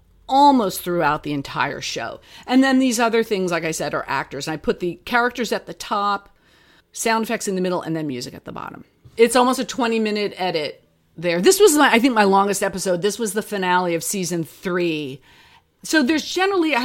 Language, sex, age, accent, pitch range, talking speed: English, female, 40-59, American, 175-250 Hz, 210 wpm